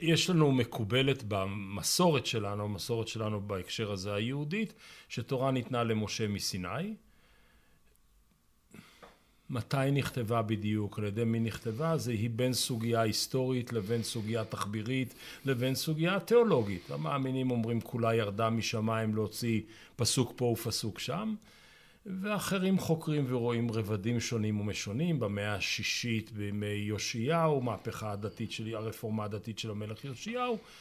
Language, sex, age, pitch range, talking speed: Hebrew, male, 40-59, 110-145 Hz, 115 wpm